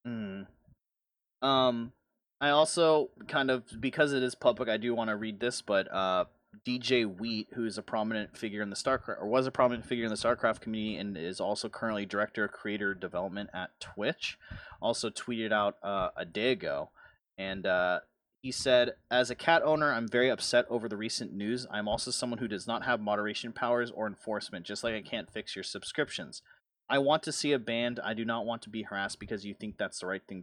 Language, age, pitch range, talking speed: English, 30-49, 105-125 Hz, 210 wpm